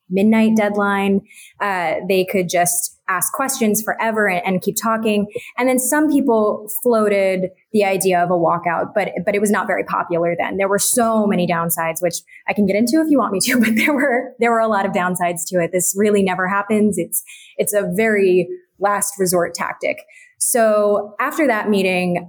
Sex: female